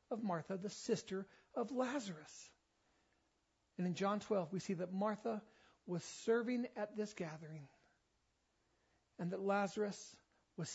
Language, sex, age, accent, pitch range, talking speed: English, male, 40-59, American, 185-235 Hz, 130 wpm